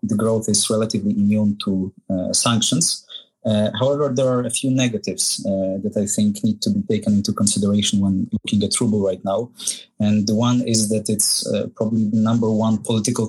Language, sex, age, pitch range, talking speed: English, male, 30-49, 105-115 Hz, 195 wpm